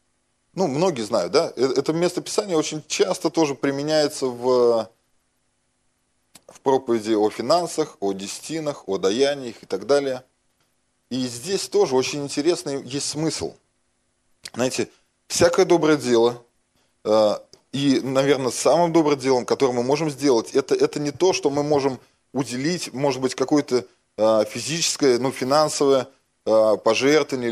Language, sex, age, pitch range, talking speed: Russian, male, 20-39, 120-150 Hz, 125 wpm